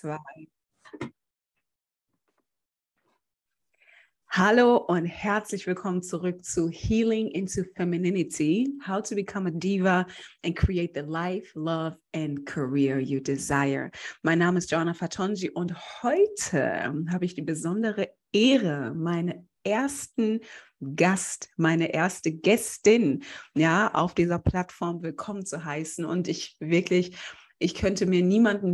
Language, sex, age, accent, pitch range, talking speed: German, female, 30-49, German, 170-205 Hz, 115 wpm